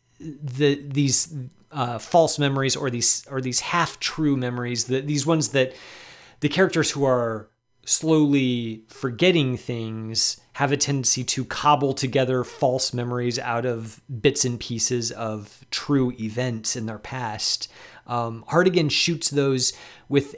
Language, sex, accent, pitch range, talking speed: English, male, American, 115-140 Hz, 140 wpm